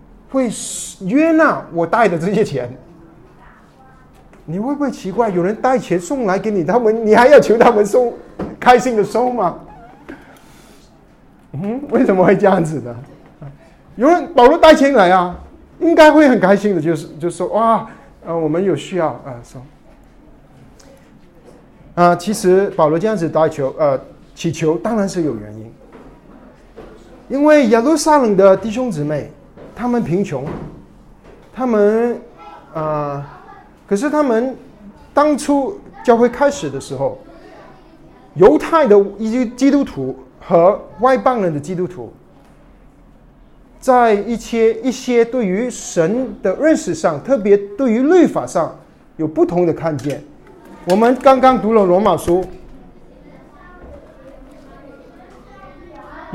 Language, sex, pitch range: Chinese, male, 170-255 Hz